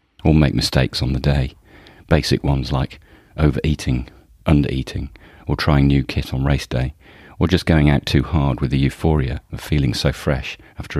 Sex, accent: male, British